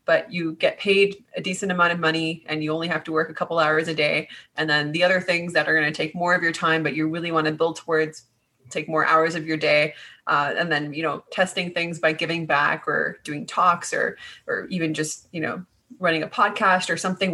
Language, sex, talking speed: English, female, 245 wpm